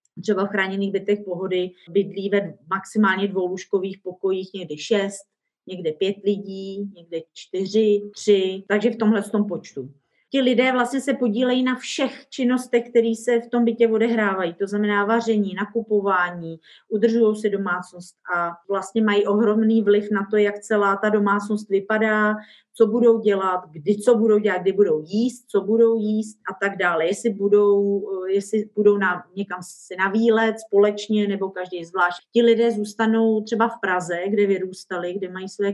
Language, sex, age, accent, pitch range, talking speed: Czech, female, 30-49, native, 190-220 Hz, 160 wpm